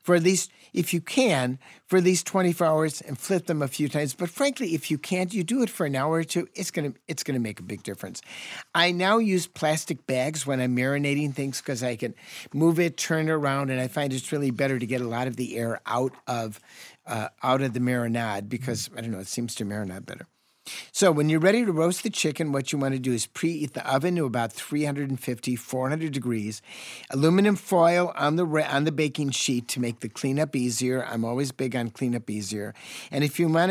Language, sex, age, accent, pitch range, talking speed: English, male, 50-69, American, 125-165 Hz, 230 wpm